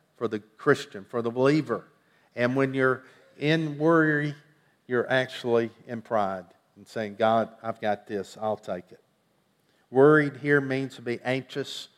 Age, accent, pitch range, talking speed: 50-69, American, 115-145 Hz, 150 wpm